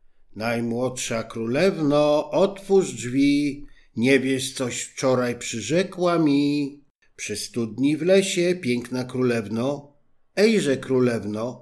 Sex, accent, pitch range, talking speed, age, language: male, native, 110-150 Hz, 95 wpm, 50-69, Polish